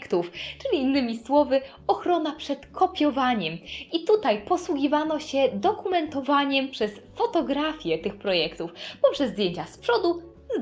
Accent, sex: native, female